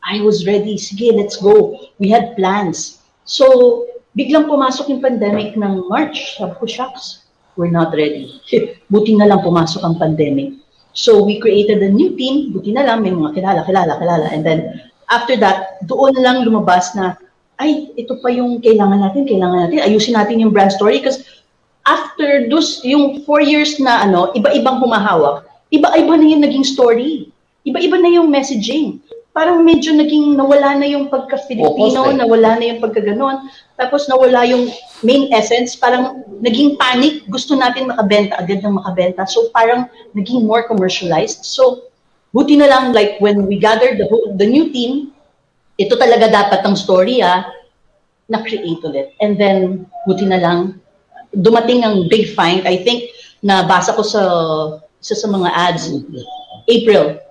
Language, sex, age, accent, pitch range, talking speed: English, female, 40-59, Filipino, 195-270 Hz, 160 wpm